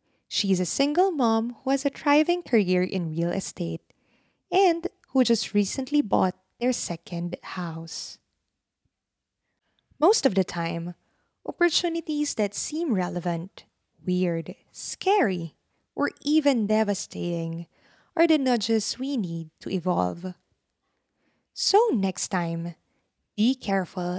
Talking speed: 115 wpm